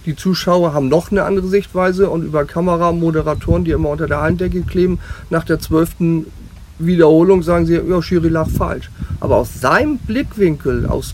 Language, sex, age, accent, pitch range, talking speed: German, male, 40-59, German, 145-190 Hz, 165 wpm